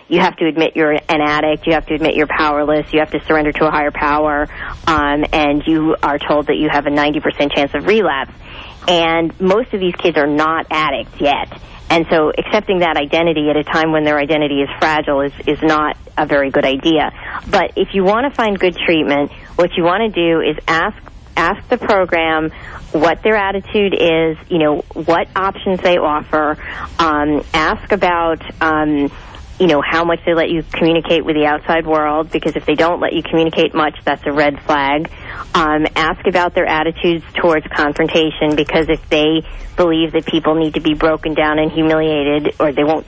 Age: 40-59